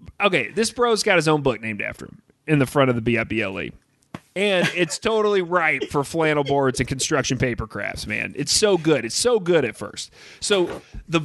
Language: English